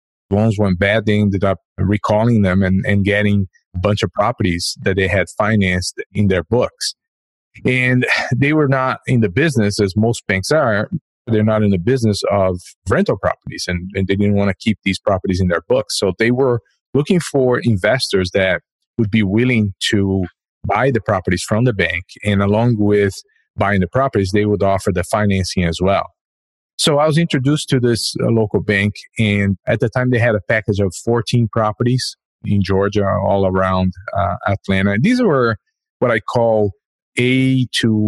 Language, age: English, 30-49